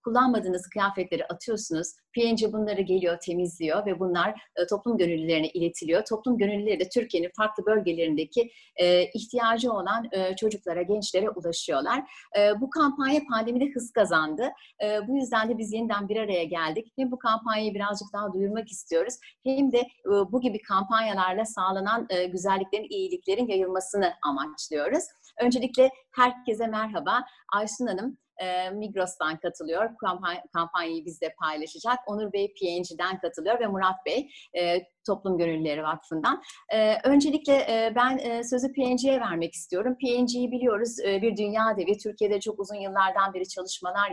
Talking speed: 130 wpm